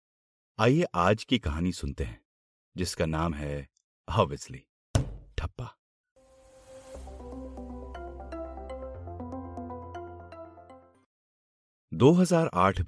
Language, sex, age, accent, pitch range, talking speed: Hindi, male, 40-59, native, 75-110 Hz, 55 wpm